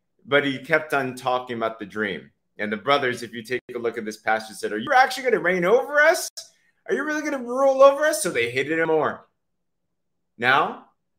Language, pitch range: English, 125-210 Hz